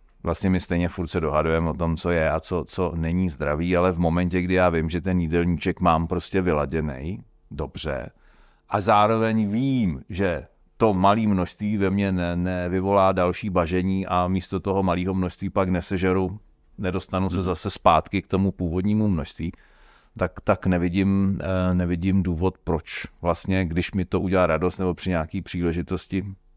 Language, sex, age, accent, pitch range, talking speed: Czech, male, 40-59, native, 85-95 Hz, 165 wpm